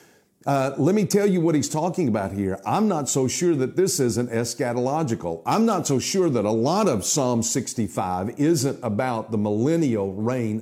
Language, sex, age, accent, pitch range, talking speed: English, male, 50-69, American, 115-165 Hz, 185 wpm